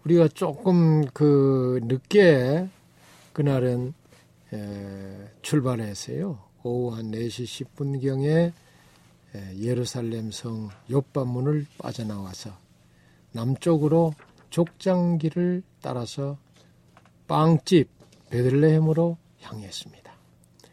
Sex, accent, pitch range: male, native, 100-160 Hz